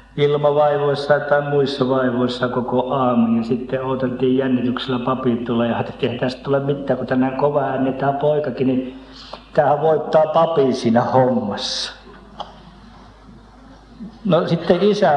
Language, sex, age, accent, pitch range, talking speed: Finnish, male, 50-69, native, 125-155 Hz, 125 wpm